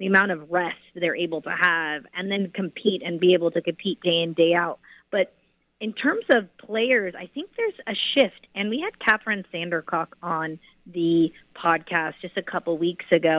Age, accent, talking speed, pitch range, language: 30-49, American, 195 wpm, 170-200 Hz, English